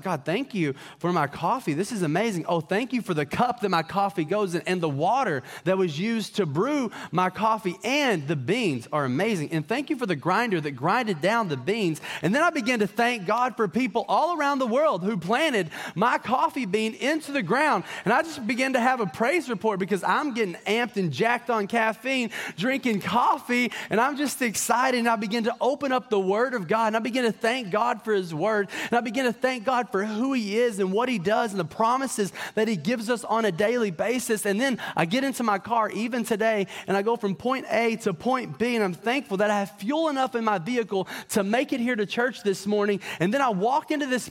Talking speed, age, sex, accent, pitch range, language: 240 wpm, 30-49, male, American, 205-260 Hz, English